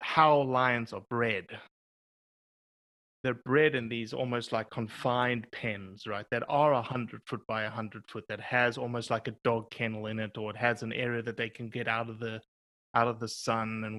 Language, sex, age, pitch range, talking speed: English, male, 30-49, 105-125 Hz, 205 wpm